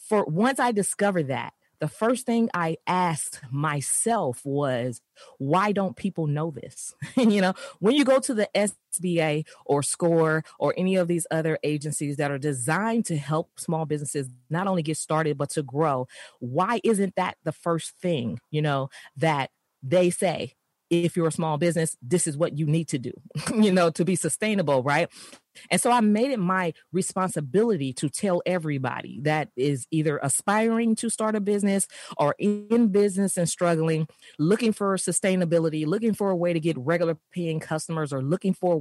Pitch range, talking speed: 155-195 Hz, 180 wpm